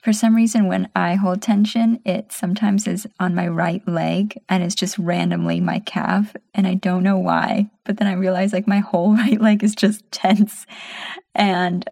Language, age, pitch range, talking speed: English, 20-39, 180-220 Hz, 190 wpm